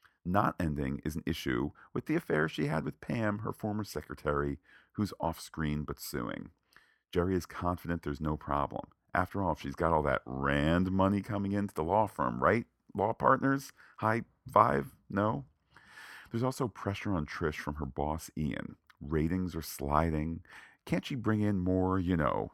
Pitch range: 75-95 Hz